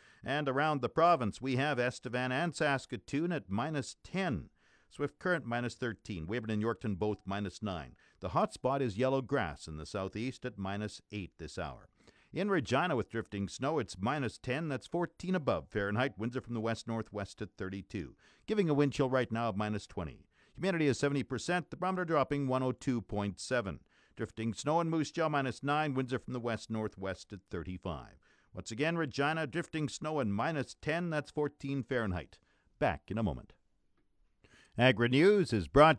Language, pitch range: English, 110-155 Hz